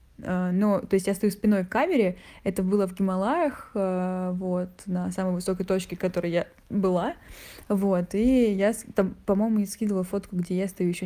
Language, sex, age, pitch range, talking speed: Russian, female, 20-39, 180-210 Hz, 170 wpm